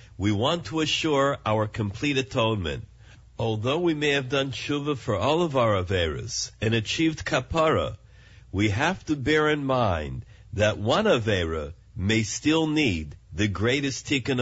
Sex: male